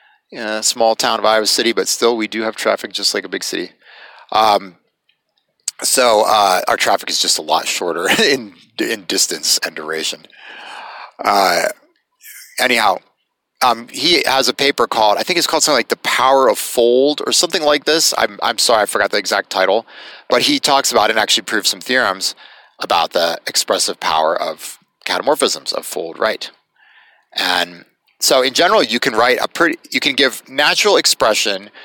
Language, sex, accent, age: English, male, American, 30-49